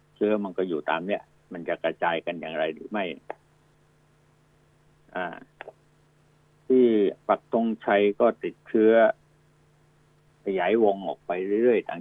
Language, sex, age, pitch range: Thai, male, 60-79, 110-150 Hz